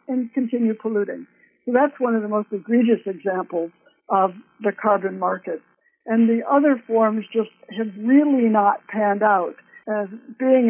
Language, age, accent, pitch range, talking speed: English, 60-79, American, 210-245 Hz, 150 wpm